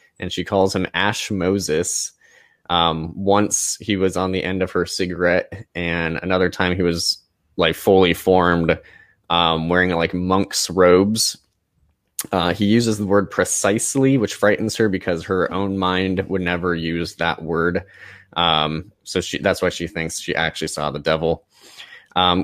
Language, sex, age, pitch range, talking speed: English, male, 20-39, 85-100 Hz, 160 wpm